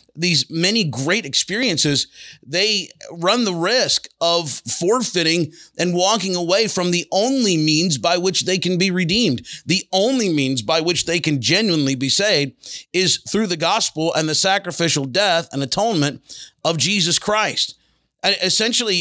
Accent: American